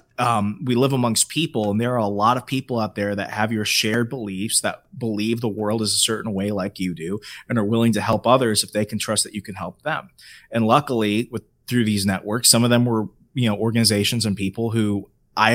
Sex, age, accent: male, 30-49, American